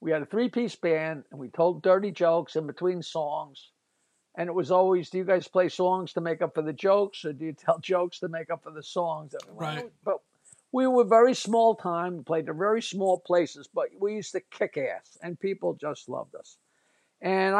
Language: English